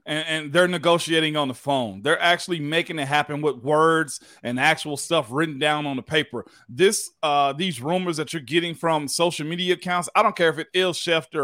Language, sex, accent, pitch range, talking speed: English, male, American, 140-175 Hz, 210 wpm